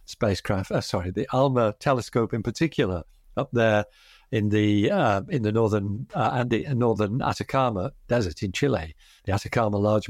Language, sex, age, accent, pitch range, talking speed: English, male, 60-79, British, 110-145 Hz, 160 wpm